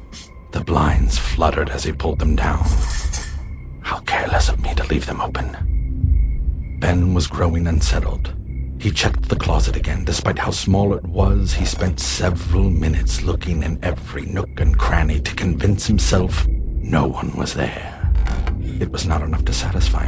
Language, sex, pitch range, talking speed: English, male, 70-90 Hz, 160 wpm